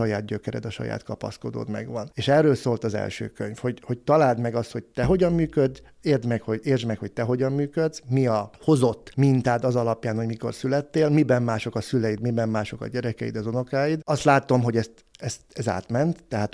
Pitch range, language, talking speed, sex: 110-130 Hz, Hungarian, 200 wpm, male